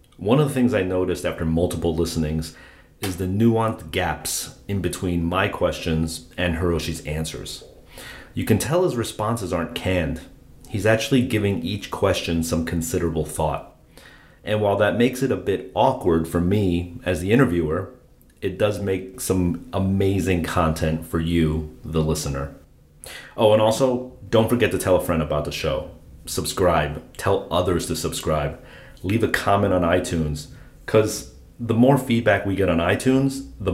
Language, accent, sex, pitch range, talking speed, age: English, American, male, 80-100 Hz, 160 wpm, 30-49